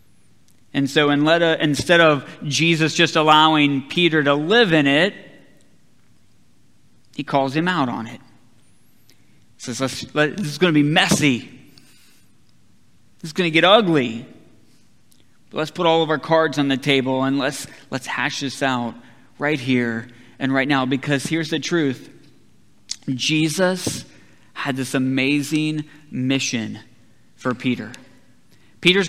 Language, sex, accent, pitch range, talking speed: English, male, American, 130-170 Hz, 145 wpm